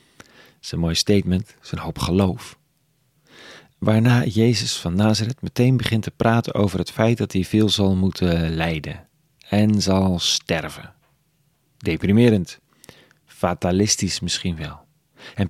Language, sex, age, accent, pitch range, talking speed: Dutch, male, 40-59, Dutch, 95-130 Hz, 130 wpm